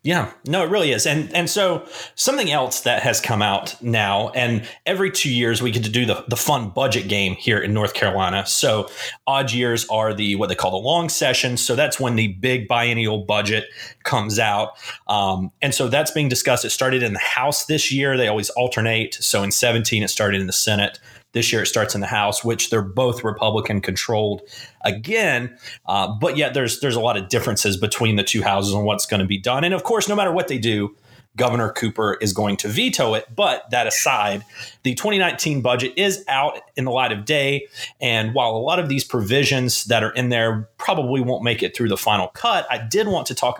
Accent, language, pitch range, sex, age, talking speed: American, English, 105-135 Hz, male, 30-49, 220 wpm